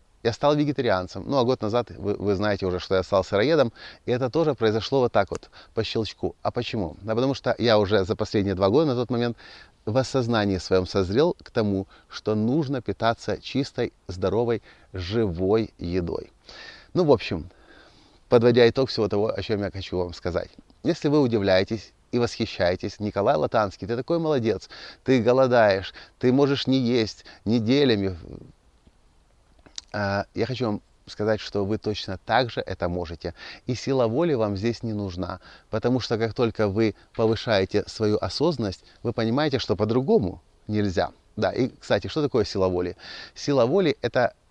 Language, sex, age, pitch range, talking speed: Russian, male, 30-49, 100-125 Hz, 165 wpm